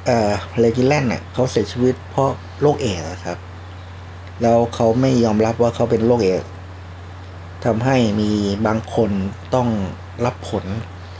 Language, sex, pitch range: Thai, male, 90-120 Hz